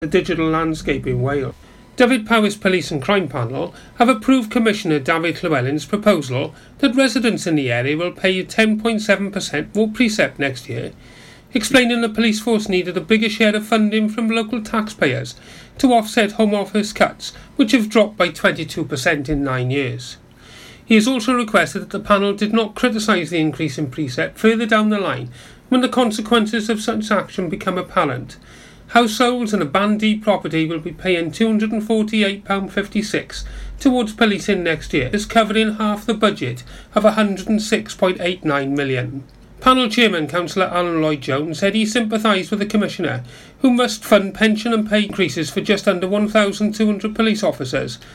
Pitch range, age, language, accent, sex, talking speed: 160-220 Hz, 40-59, English, British, male, 160 wpm